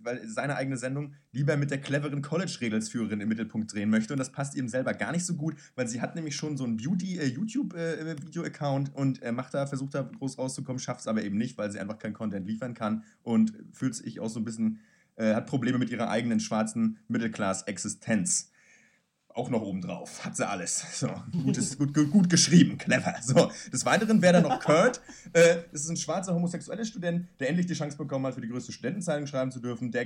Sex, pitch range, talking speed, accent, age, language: male, 130-175 Hz, 220 wpm, German, 30-49, German